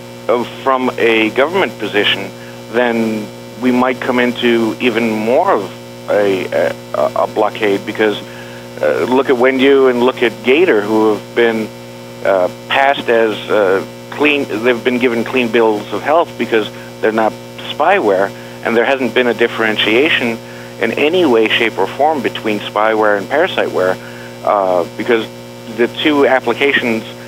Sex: male